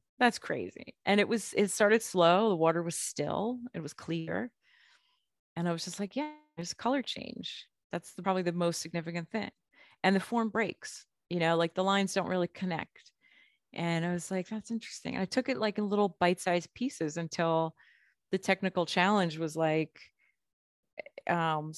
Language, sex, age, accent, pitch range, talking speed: English, female, 30-49, American, 170-220 Hz, 180 wpm